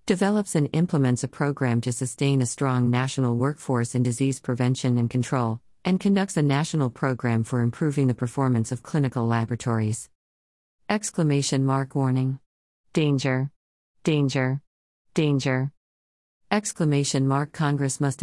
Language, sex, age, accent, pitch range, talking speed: English, female, 50-69, American, 130-155 Hz, 125 wpm